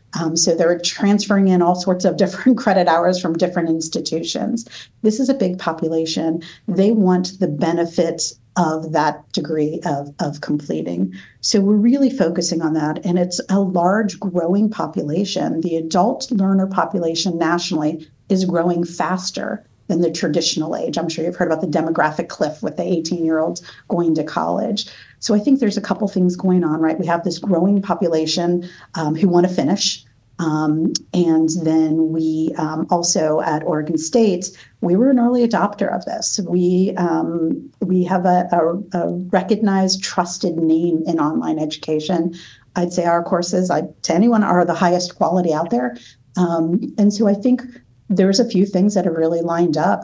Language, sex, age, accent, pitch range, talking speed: English, female, 40-59, American, 160-190 Hz, 175 wpm